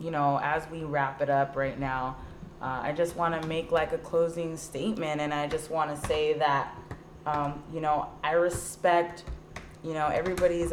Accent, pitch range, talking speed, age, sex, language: American, 145-165 Hz, 180 wpm, 20-39, female, English